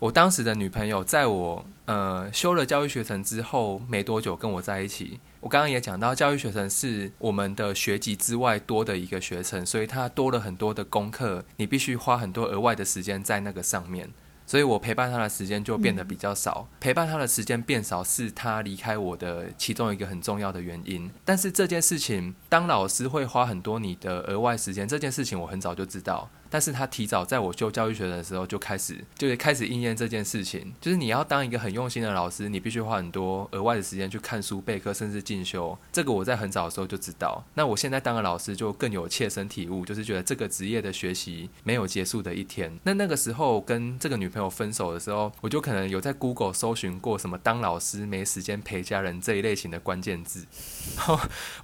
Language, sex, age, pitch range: Chinese, male, 20-39, 95-125 Hz